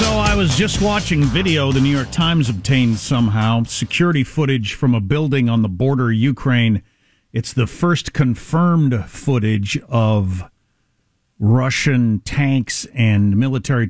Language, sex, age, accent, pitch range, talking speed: English, male, 50-69, American, 105-140 Hz, 140 wpm